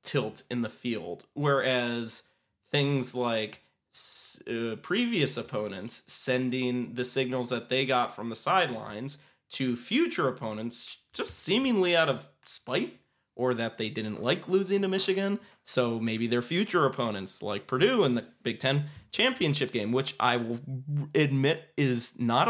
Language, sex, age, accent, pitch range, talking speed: English, male, 20-39, American, 120-140 Hz, 150 wpm